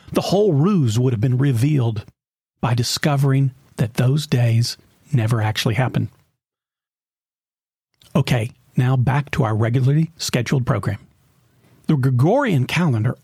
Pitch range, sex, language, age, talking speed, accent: 125-165 Hz, male, English, 40-59, 120 wpm, American